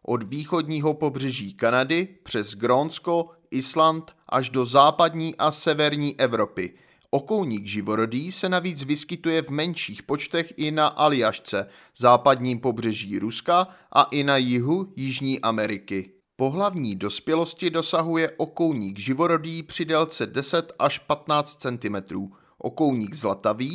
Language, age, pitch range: Czech, 30-49, 120-165 Hz